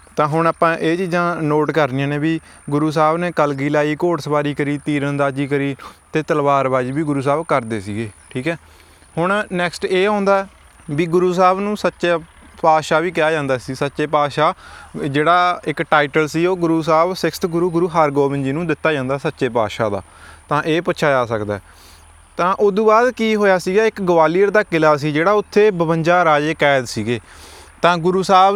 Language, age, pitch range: Punjabi, 20-39, 150-185 Hz